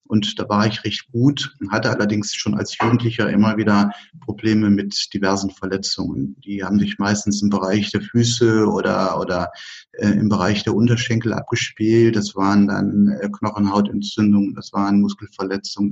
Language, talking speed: German, 155 wpm